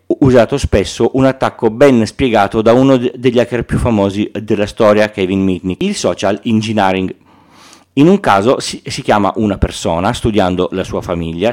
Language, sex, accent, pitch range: Italian, male, native, 95-125 Hz